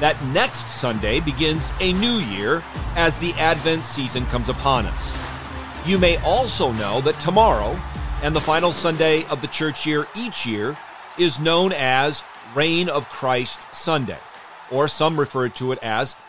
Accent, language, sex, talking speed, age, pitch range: American, English, male, 160 wpm, 40-59, 125-170 Hz